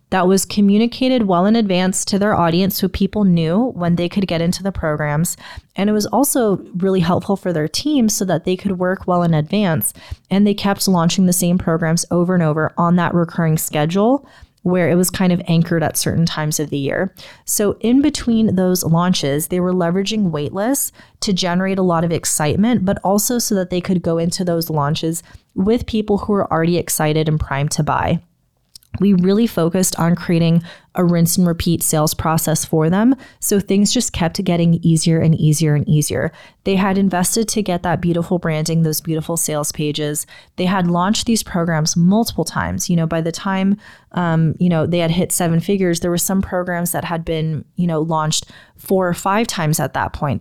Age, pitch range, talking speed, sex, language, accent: 30-49, 165-195 Hz, 200 wpm, female, English, American